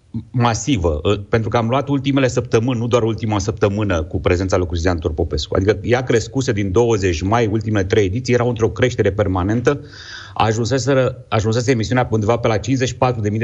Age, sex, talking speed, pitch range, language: 30-49, male, 160 wpm, 100-140 Hz, Romanian